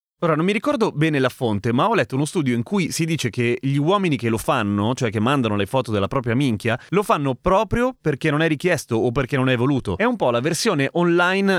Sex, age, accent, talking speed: male, 30-49, native, 250 wpm